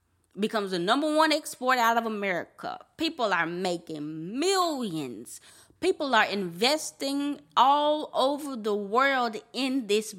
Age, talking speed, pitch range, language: 20-39, 125 wpm, 185-275 Hz, English